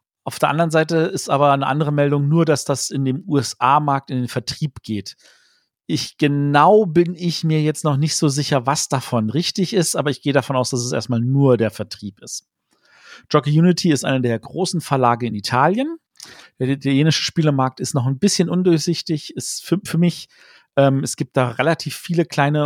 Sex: male